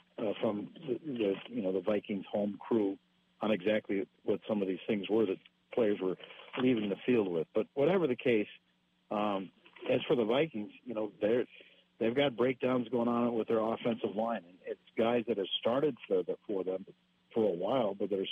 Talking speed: 195 wpm